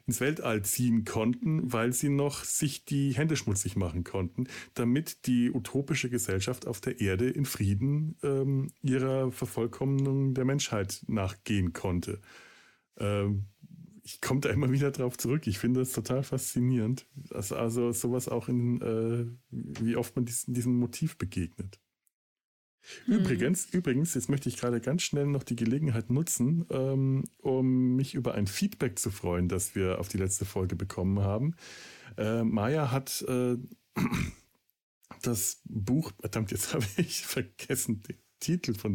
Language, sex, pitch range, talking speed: German, male, 105-135 Hz, 150 wpm